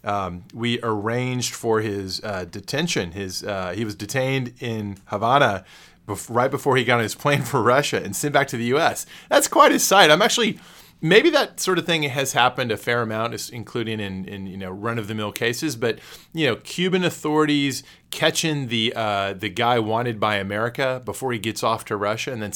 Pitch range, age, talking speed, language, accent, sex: 105-130 Hz, 30-49, 210 wpm, English, American, male